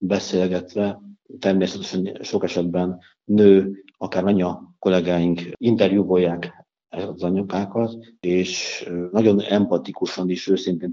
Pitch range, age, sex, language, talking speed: 90-105 Hz, 50-69, male, Hungarian, 95 wpm